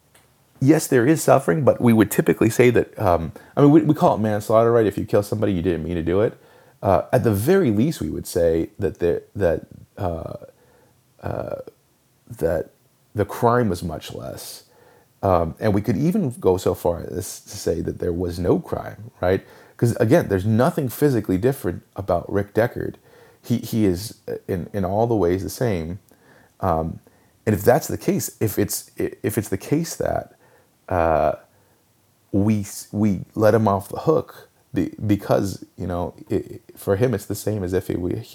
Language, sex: English, male